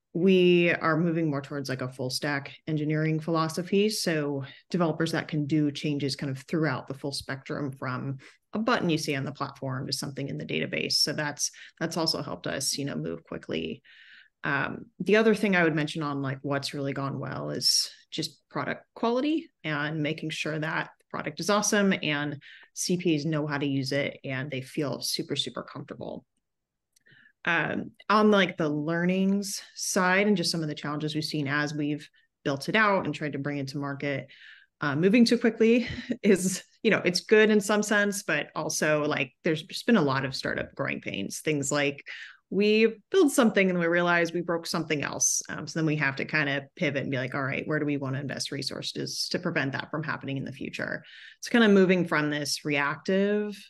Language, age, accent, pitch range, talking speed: English, 30-49, American, 140-185 Hz, 205 wpm